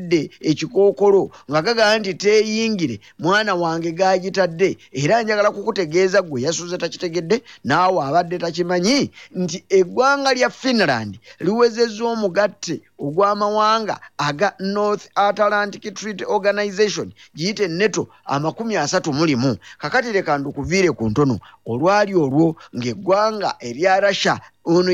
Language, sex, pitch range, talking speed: English, male, 170-210 Hz, 120 wpm